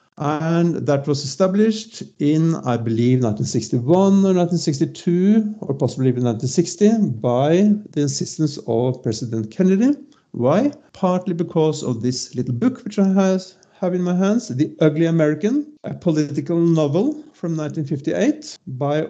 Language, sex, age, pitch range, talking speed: English, male, 50-69, 140-190 Hz, 130 wpm